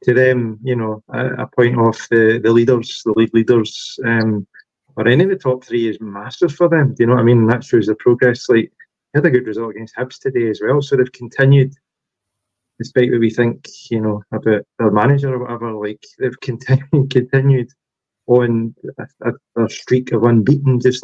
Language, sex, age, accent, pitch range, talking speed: English, male, 20-39, British, 110-130 Hz, 205 wpm